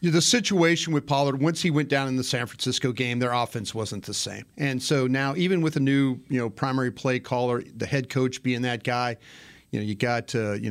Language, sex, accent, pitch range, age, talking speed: English, male, American, 115-135 Hz, 40-59, 235 wpm